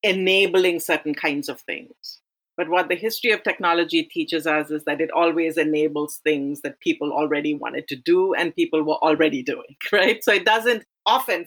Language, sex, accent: English, female, Indian